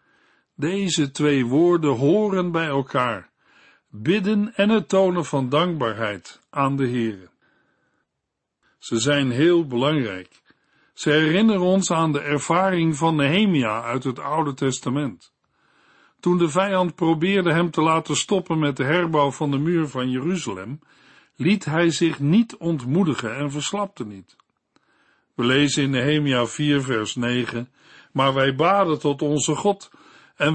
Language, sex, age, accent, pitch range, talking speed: Dutch, male, 50-69, Dutch, 140-175 Hz, 135 wpm